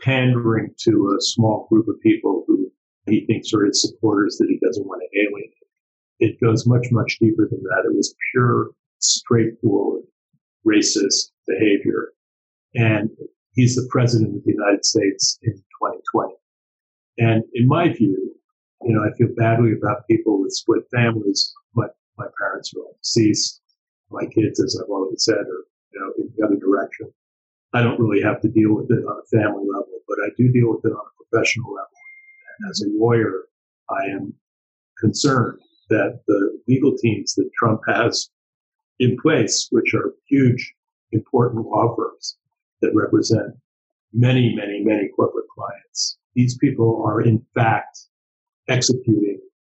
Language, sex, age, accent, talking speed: English, male, 50-69, American, 155 wpm